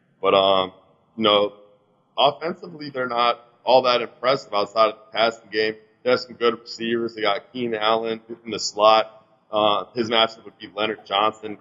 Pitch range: 105-135 Hz